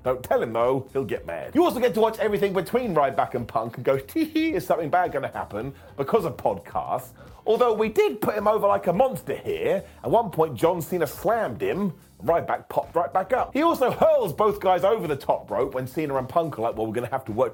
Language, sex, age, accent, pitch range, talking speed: English, male, 30-49, British, 145-225 Hz, 250 wpm